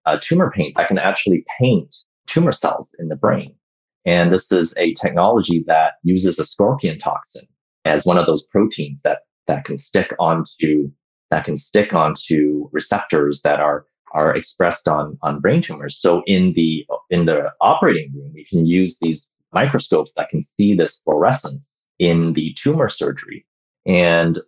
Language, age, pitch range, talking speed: English, 30-49, 80-95 Hz, 165 wpm